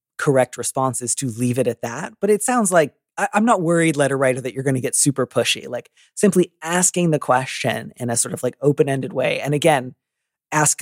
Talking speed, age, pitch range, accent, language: 210 wpm, 30-49, 125-150 Hz, American, English